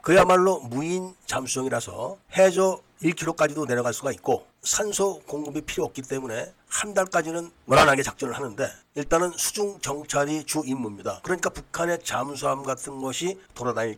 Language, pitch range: Korean, 135-180 Hz